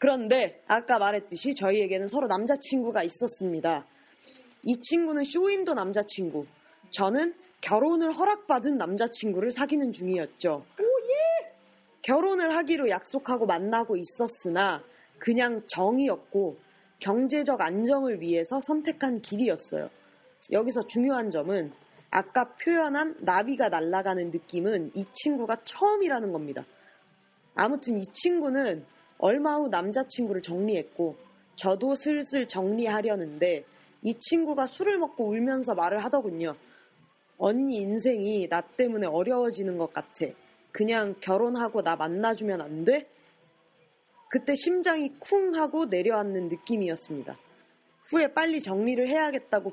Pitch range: 195-280 Hz